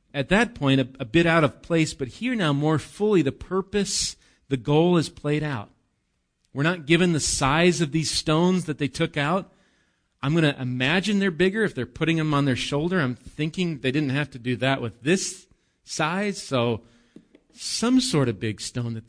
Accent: American